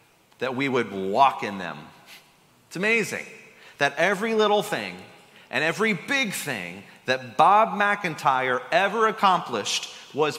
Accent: American